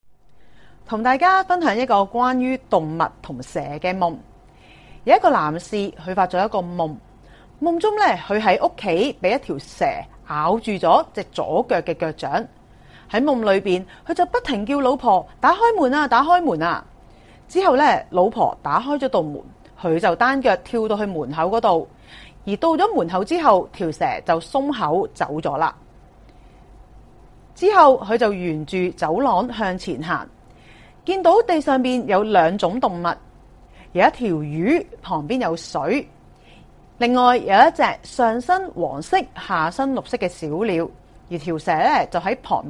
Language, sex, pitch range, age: Chinese, female, 180-275 Hz, 30-49